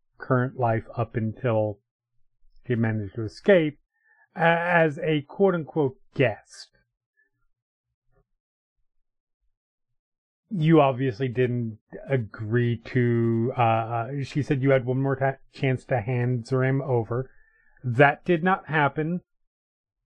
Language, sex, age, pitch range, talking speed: English, male, 30-49, 120-170 Hz, 100 wpm